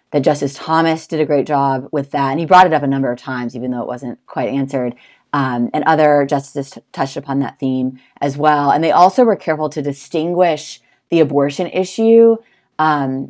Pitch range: 135-155 Hz